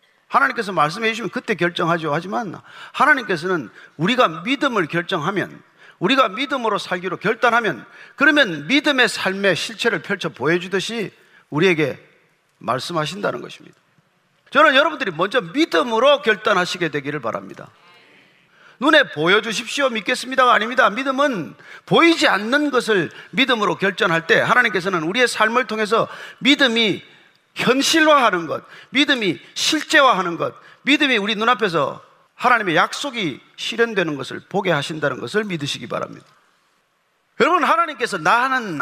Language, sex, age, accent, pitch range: Korean, male, 40-59, native, 170-260 Hz